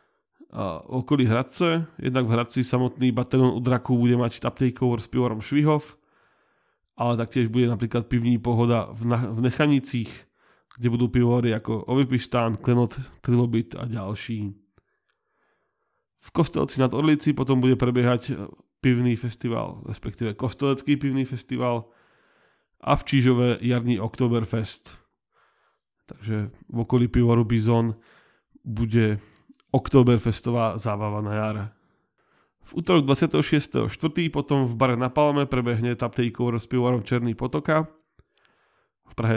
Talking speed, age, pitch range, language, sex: 115 wpm, 20-39, 115-130 Hz, Czech, male